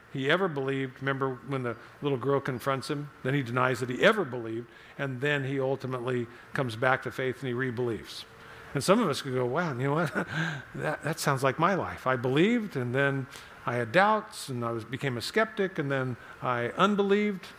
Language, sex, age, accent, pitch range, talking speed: English, male, 50-69, American, 125-150 Hz, 210 wpm